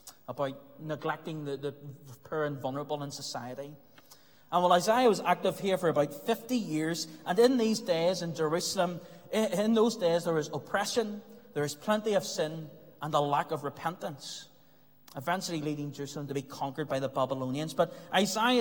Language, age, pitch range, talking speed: English, 30-49, 165-215 Hz, 170 wpm